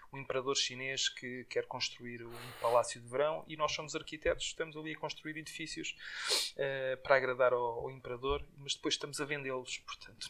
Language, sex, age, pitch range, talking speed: Portuguese, male, 20-39, 130-160 Hz, 180 wpm